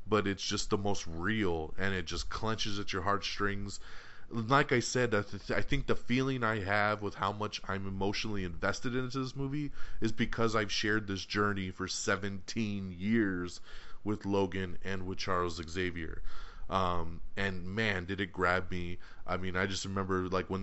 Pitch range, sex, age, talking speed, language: 95-105 Hz, male, 30-49, 180 wpm, English